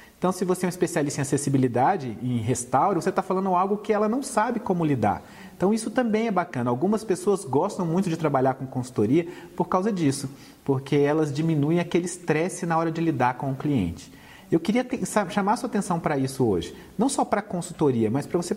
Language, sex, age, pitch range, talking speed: Portuguese, male, 40-59, 135-190 Hz, 205 wpm